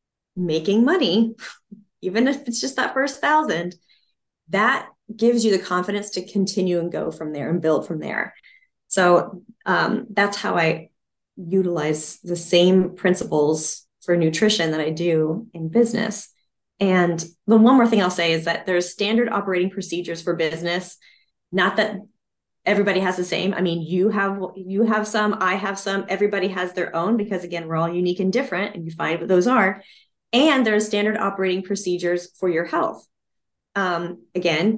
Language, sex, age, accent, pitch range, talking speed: English, female, 20-39, American, 170-205 Hz, 165 wpm